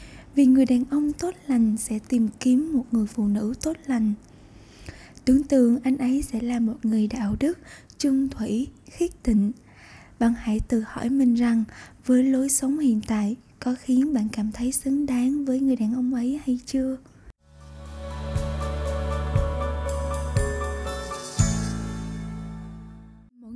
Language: Vietnamese